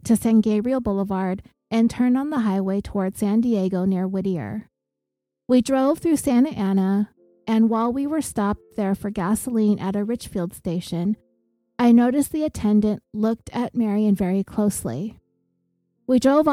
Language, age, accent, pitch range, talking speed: English, 30-49, American, 190-235 Hz, 155 wpm